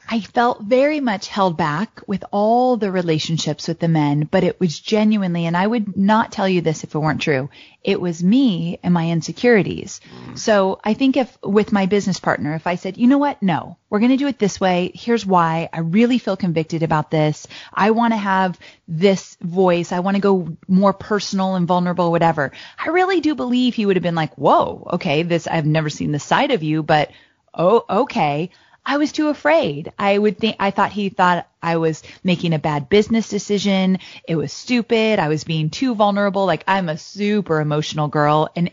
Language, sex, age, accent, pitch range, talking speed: English, female, 30-49, American, 165-215 Hz, 210 wpm